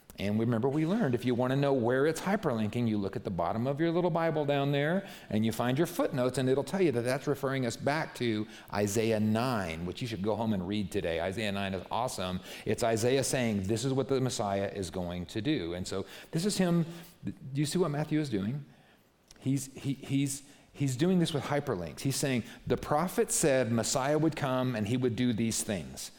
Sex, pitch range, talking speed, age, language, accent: male, 105-145 Hz, 220 wpm, 40-59, English, American